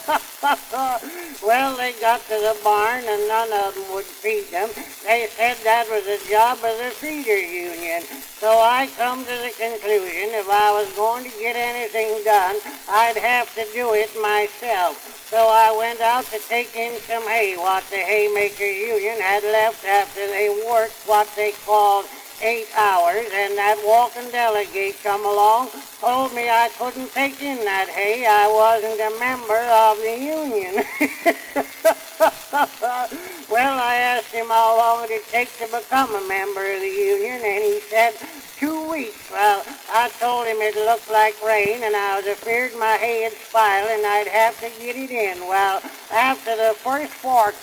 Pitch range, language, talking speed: 210-250 Hz, English, 170 wpm